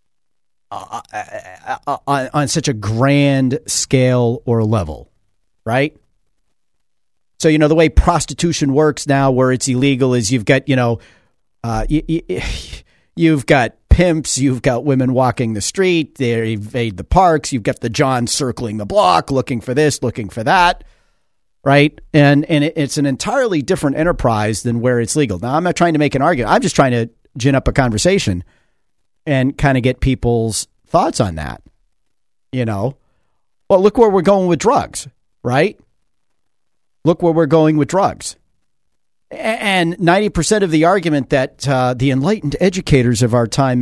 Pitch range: 120-165 Hz